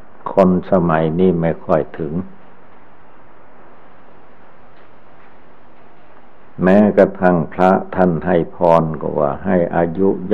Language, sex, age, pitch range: Thai, male, 60-79, 80-95 Hz